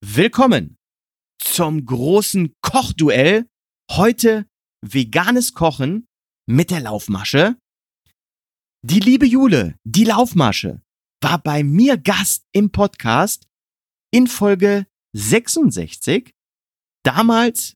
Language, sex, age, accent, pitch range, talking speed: German, male, 40-59, German, 125-210 Hz, 85 wpm